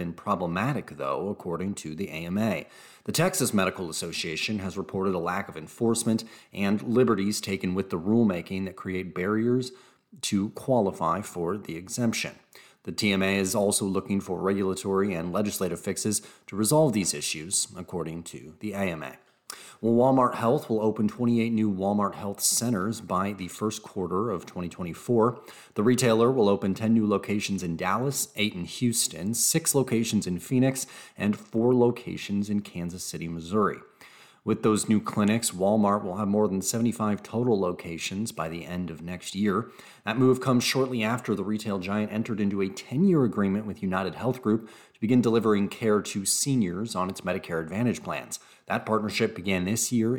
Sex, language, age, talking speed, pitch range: male, English, 30-49, 165 wpm, 95-115 Hz